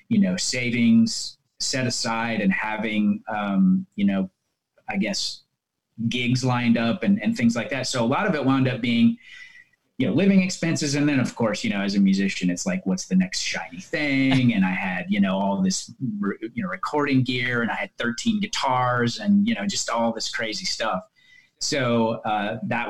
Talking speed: 195 wpm